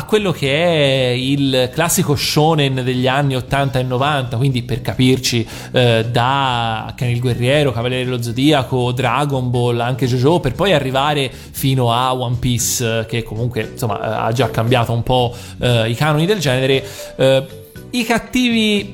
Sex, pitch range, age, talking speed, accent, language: male, 125-150 Hz, 30-49, 145 wpm, native, Italian